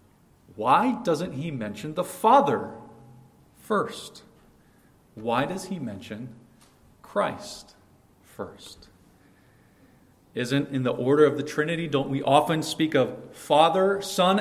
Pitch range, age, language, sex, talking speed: 130-160 Hz, 40-59, English, male, 110 wpm